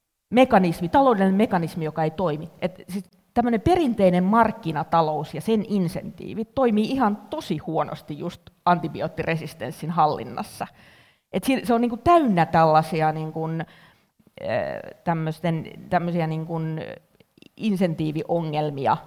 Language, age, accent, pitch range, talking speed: Finnish, 30-49, native, 155-185 Hz, 90 wpm